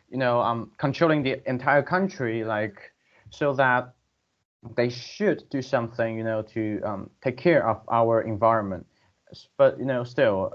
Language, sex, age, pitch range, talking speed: English, male, 20-39, 115-135 Hz, 155 wpm